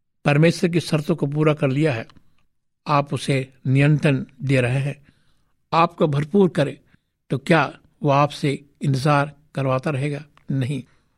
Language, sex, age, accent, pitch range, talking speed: Hindi, male, 60-79, native, 135-155 Hz, 140 wpm